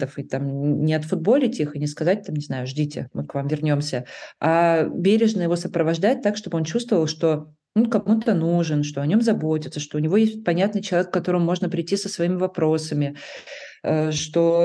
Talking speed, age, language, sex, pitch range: 190 wpm, 30-49, Russian, female, 150-185 Hz